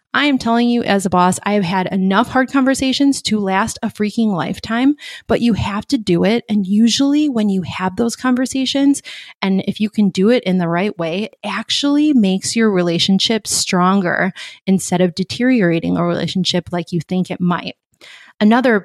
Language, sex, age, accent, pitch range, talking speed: English, female, 20-39, American, 185-230 Hz, 185 wpm